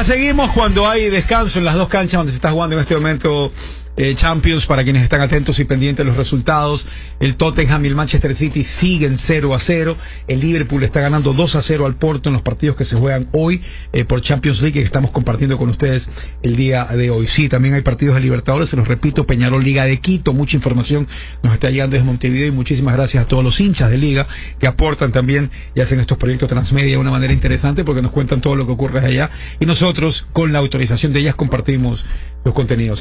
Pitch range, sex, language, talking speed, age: 130-155 Hz, male, English, 225 wpm, 50-69